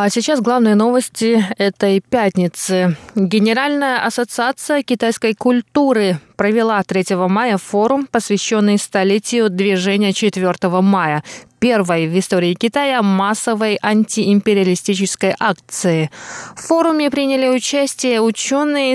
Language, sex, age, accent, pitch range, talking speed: Russian, female, 20-39, native, 195-235 Hz, 100 wpm